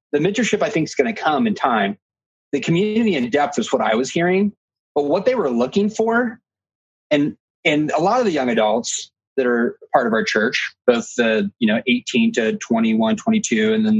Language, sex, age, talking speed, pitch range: English, male, 20-39, 210 wpm, 130-205 Hz